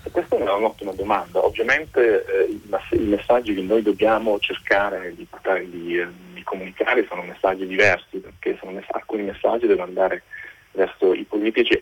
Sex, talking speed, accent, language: male, 145 wpm, native, Italian